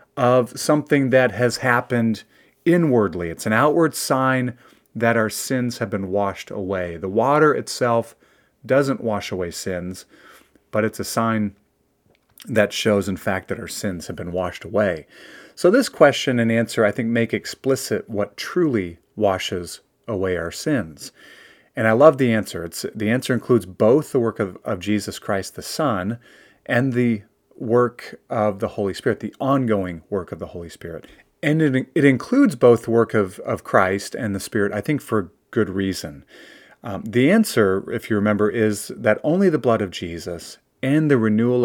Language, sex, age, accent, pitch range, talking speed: English, male, 30-49, American, 100-125 Hz, 170 wpm